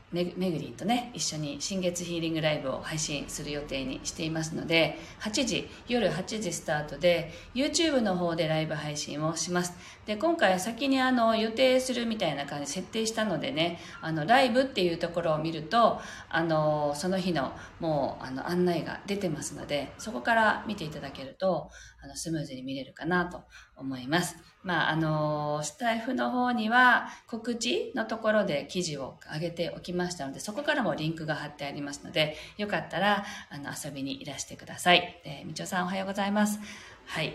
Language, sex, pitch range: Japanese, female, 155-215 Hz